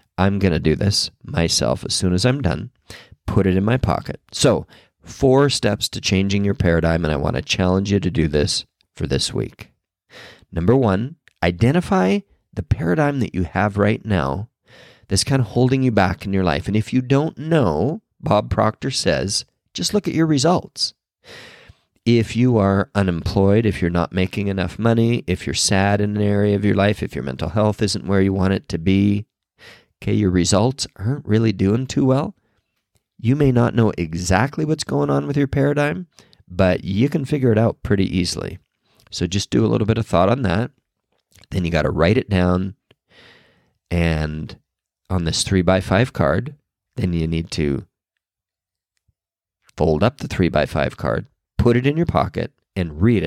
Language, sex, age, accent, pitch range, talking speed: English, male, 40-59, American, 90-120 Hz, 185 wpm